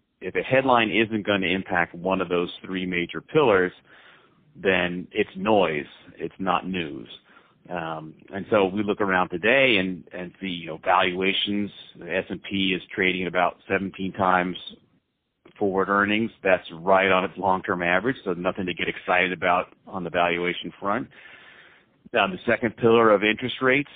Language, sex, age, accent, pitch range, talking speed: English, male, 40-59, American, 90-100 Hz, 160 wpm